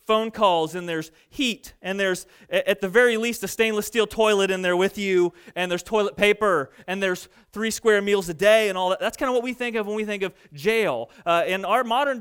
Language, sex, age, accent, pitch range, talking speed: English, male, 30-49, American, 180-220 Hz, 240 wpm